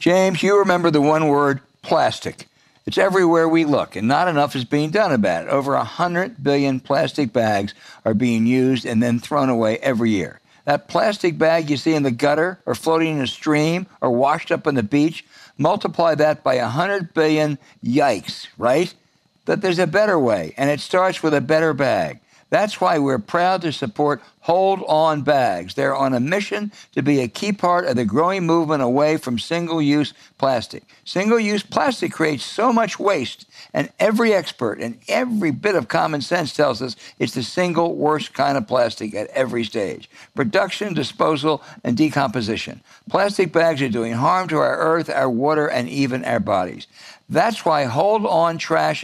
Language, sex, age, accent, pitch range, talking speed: English, male, 60-79, American, 140-180 Hz, 180 wpm